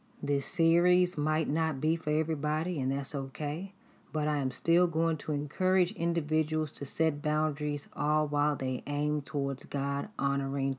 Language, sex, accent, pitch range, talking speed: English, female, American, 140-165 Hz, 155 wpm